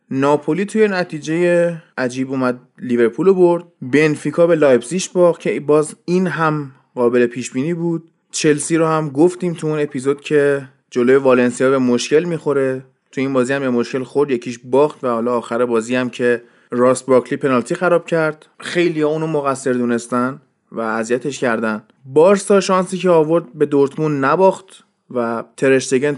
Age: 20-39